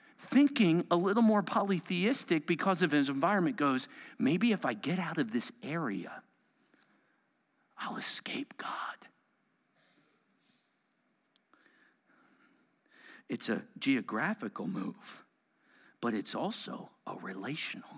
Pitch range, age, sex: 150-240 Hz, 50-69, male